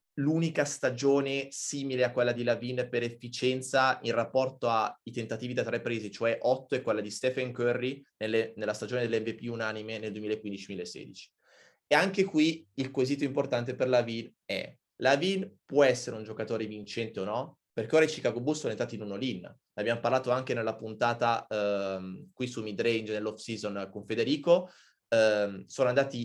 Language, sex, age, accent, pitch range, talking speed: Italian, male, 20-39, native, 110-130 Hz, 160 wpm